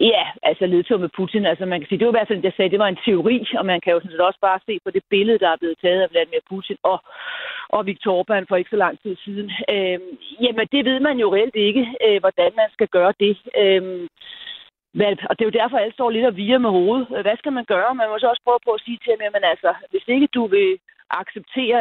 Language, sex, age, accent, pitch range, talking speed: Danish, female, 40-59, native, 190-240 Hz, 270 wpm